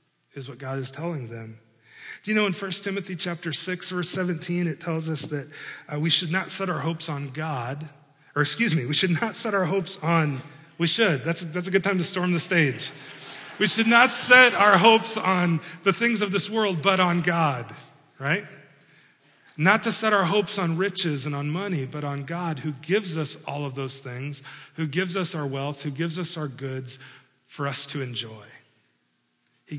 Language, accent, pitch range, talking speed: English, American, 140-190 Hz, 205 wpm